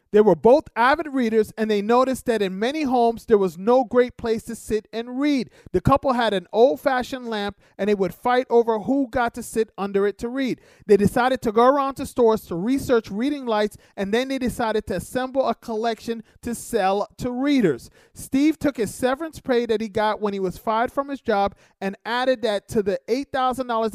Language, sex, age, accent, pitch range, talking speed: English, male, 40-59, American, 205-255 Hz, 210 wpm